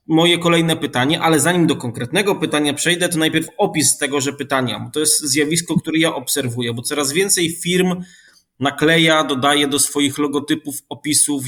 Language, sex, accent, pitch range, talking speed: Polish, male, native, 140-165 Hz, 165 wpm